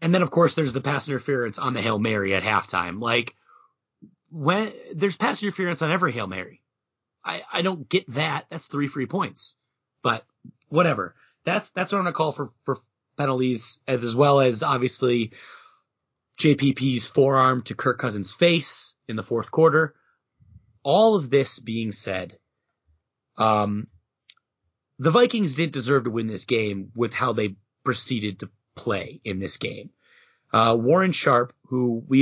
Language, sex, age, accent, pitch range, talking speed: English, male, 30-49, American, 115-155 Hz, 160 wpm